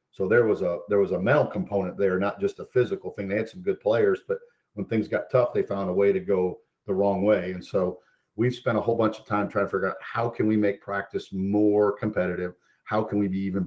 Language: English